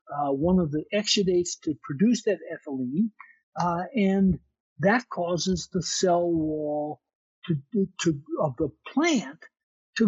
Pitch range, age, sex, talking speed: 165-215 Hz, 60-79, male, 130 wpm